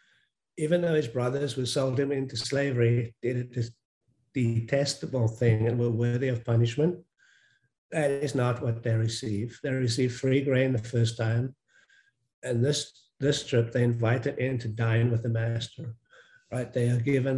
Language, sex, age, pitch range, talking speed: English, male, 50-69, 115-130 Hz, 160 wpm